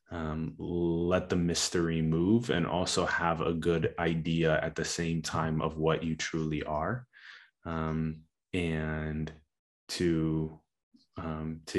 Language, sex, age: English, male, 20-39